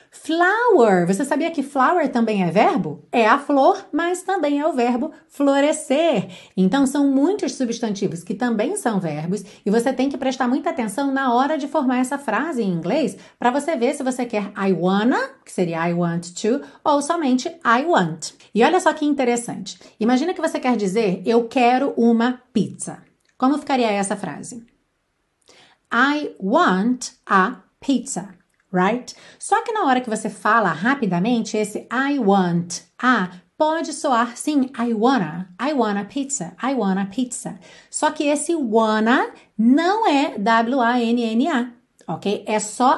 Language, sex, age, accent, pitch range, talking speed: Portuguese, female, 40-59, Brazilian, 215-285 Hz, 160 wpm